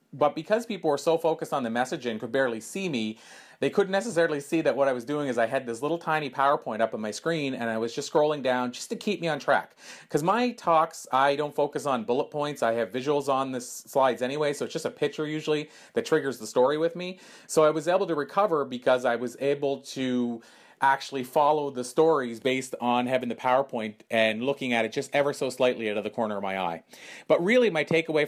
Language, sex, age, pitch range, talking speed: English, male, 30-49, 125-155 Hz, 240 wpm